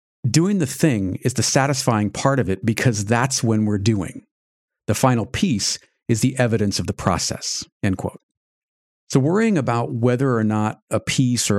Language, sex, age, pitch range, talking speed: English, male, 50-69, 105-130 Hz, 175 wpm